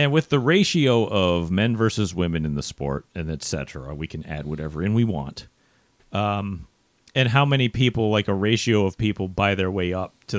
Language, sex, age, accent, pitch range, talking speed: English, male, 40-59, American, 90-120 Hz, 200 wpm